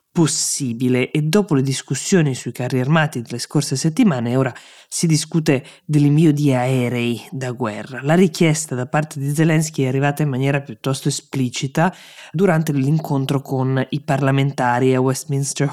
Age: 20-39